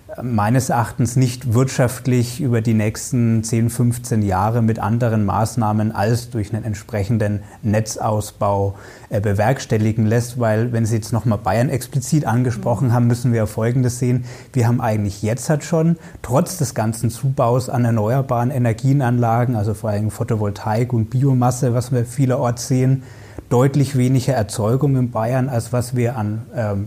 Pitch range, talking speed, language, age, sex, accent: 110-130 Hz, 150 wpm, German, 30-49, male, German